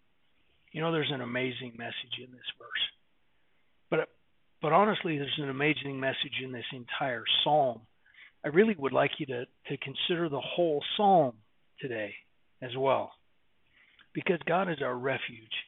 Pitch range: 125-165 Hz